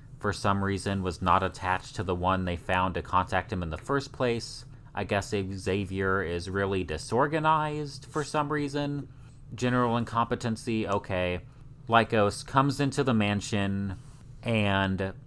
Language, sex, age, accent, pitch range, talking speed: English, male, 30-49, American, 95-125 Hz, 140 wpm